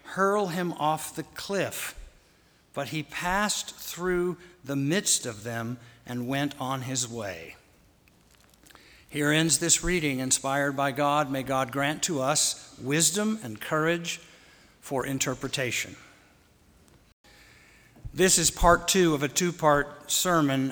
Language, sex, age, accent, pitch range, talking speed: English, male, 60-79, American, 135-165 Hz, 125 wpm